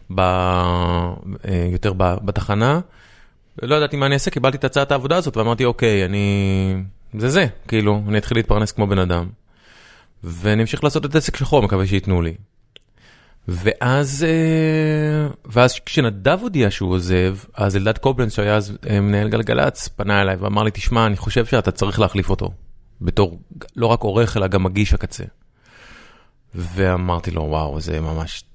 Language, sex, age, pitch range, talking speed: Hebrew, male, 30-49, 95-120 Hz, 145 wpm